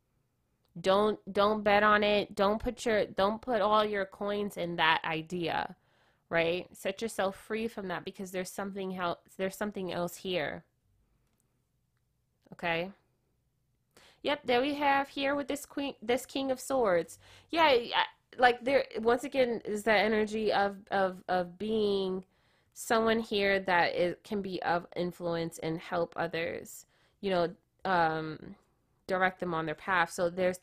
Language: English